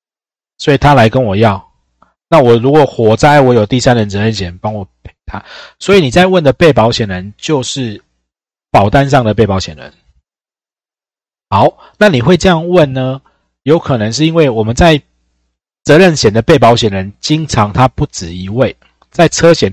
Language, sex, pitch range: Chinese, male, 100-150 Hz